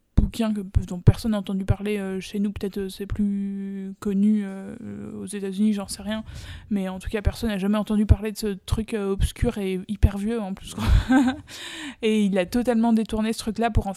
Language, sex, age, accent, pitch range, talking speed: French, female, 20-39, French, 195-220 Hz, 210 wpm